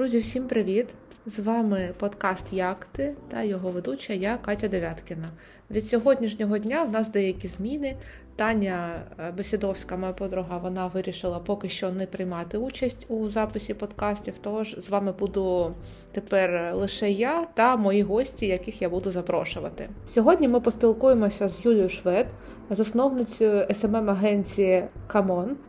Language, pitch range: Ukrainian, 190-225 Hz